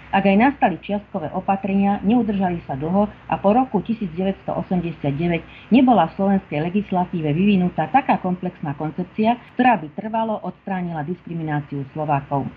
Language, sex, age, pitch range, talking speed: Slovak, female, 40-59, 160-205 Hz, 125 wpm